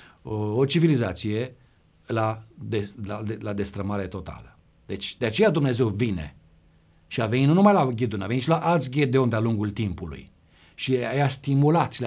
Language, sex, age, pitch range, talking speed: Romanian, male, 50-69, 105-160 Hz, 180 wpm